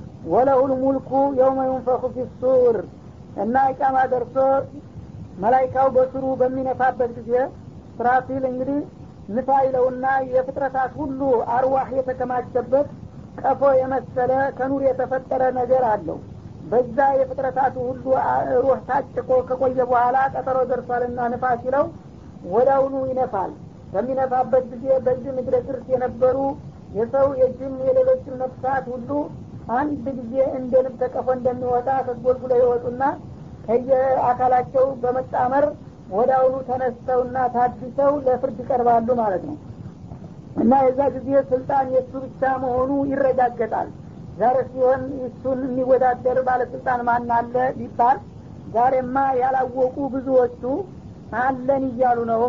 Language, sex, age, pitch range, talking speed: Amharic, female, 50-69, 245-265 Hz, 105 wpm